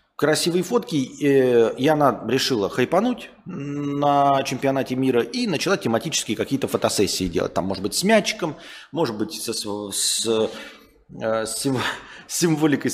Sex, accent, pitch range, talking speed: male, native, 110-170 Hz, 115 wpm